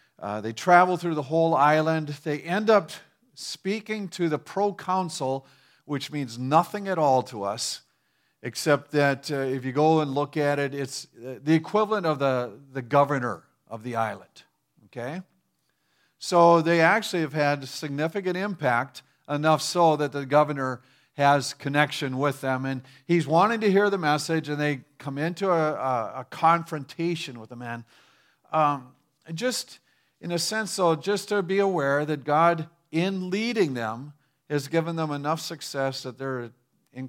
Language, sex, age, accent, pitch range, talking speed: English, male, 50-69, American, 130-165 Hz, 160 wpm